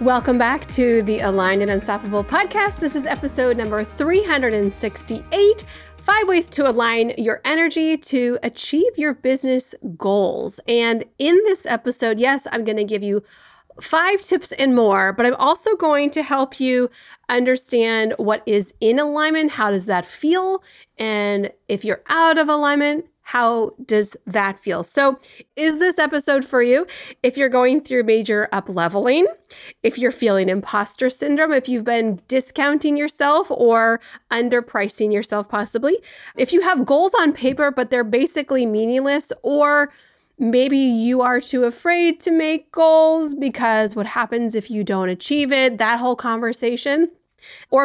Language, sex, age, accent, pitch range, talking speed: English, female, 30-49, American, 220-295 Hz, 150 wpm